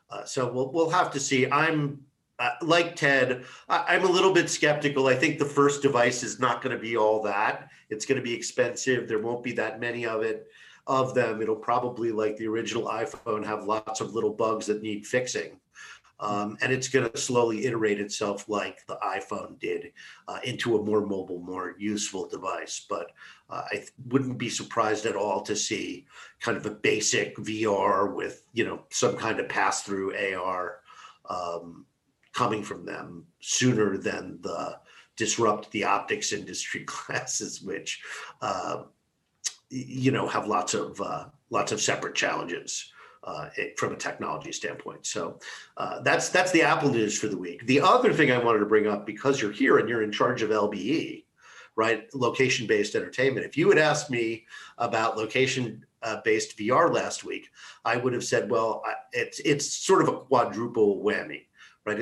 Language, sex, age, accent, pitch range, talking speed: English, male, 50-69, American, 110-145 Hz, 175 wpm